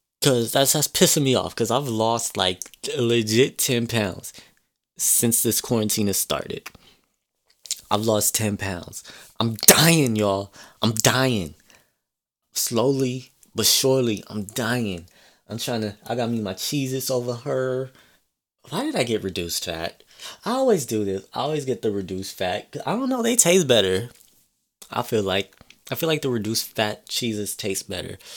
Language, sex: English, male